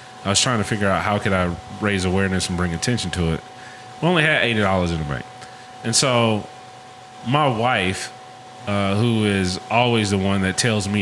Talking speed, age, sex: 195 wpm, 30-49, male